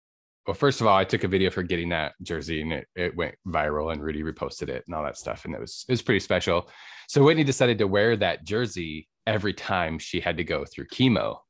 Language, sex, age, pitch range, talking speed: English, male, 20-39, 85-105 Hz, 245 wpm